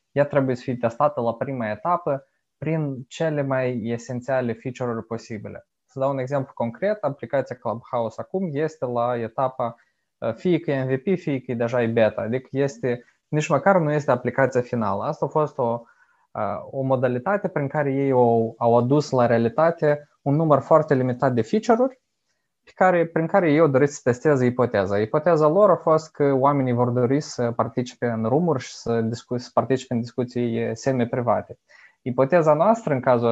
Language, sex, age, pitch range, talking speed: Romanian, male, 20-39, 120-145 Hz, 175 wpm